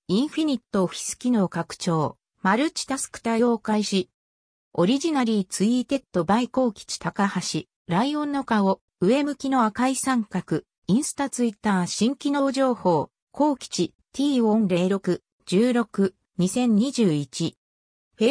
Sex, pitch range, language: female, 185-265 Hz, Japanese